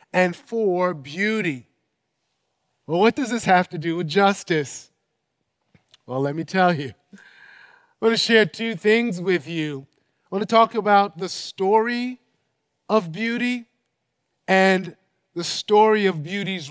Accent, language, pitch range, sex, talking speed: American, English, 180-215 Hz, male, 140 wpm